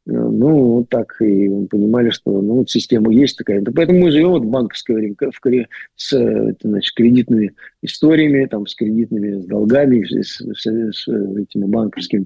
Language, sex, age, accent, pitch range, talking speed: Russian, male, 50-69, native, 110-155 Hz, 160 wpm